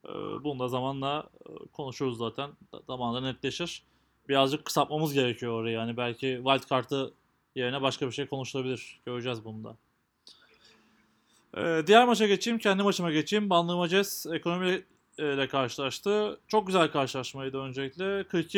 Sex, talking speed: male, 115 wpm